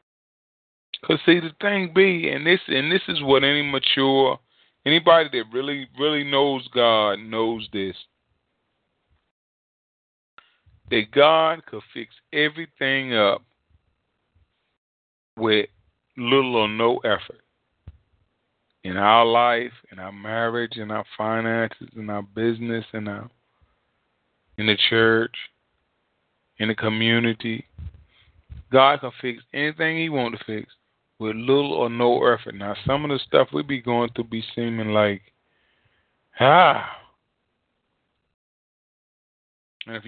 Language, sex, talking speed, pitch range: English, male, 120 wpm, 110-145 Hz